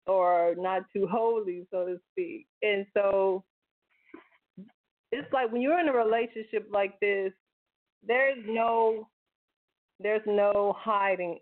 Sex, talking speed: female, 120 wpm